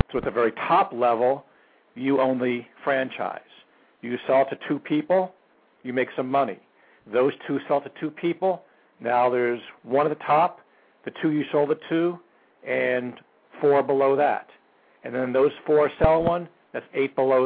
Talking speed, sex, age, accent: 170 wpm, male, 60-79, American